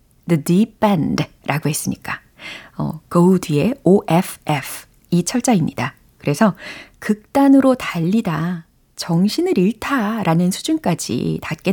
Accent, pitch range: native, 165-245 Hz